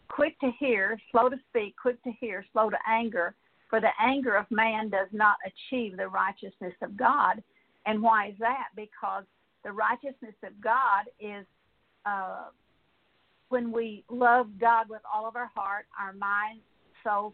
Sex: female